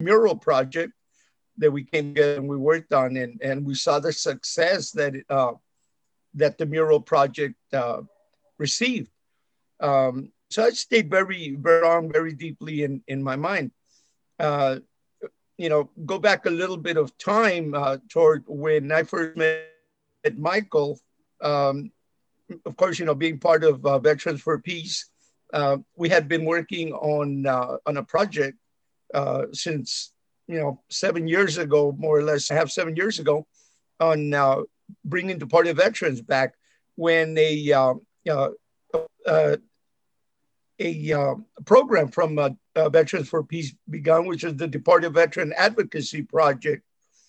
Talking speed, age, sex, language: 145 wpm, 50-69, male, English